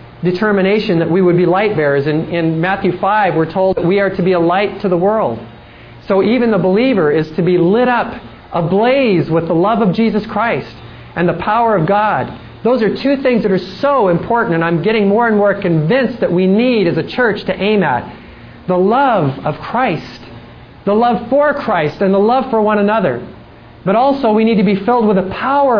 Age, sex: 40-59, male